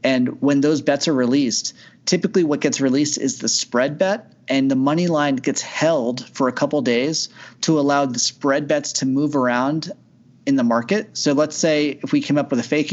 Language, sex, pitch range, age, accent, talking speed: English, male, 125-155 Hz, 30-49, American, 210 wpm